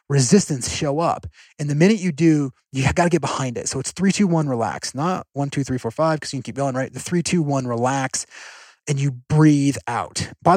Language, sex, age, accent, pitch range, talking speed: English, male, 30-49, American, 135-180 Hz, 240 wpm